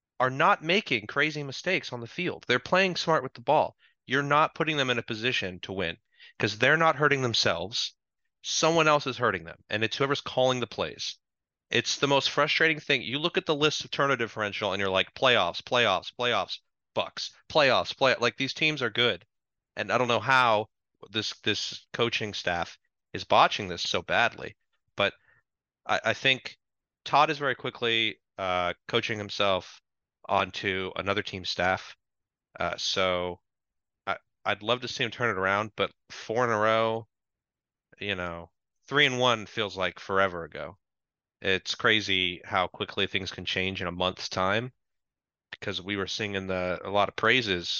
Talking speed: 175 wpm